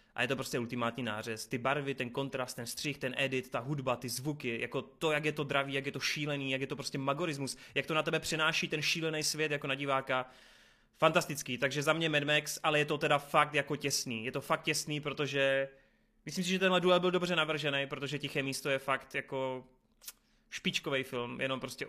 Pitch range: 135-165 Hz